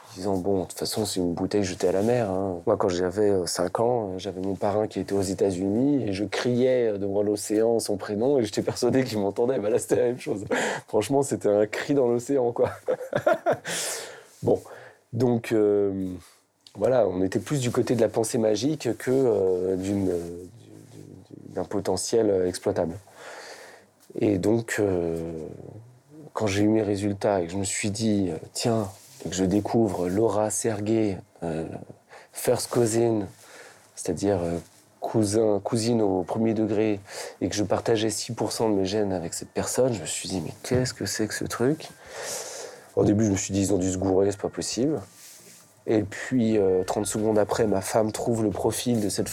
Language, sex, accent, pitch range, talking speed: French, male, French, 95-115 Hz, 180 wpm